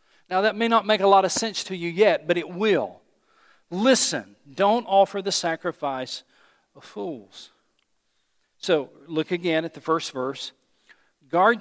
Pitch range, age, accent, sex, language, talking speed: 165-205 Hz, 50-69, American, male, English, 155 wpm